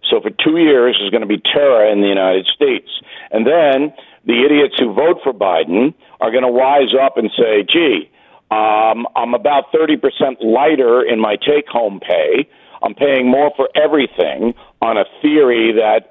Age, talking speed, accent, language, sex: 50-69, 175 wpm, American, English, male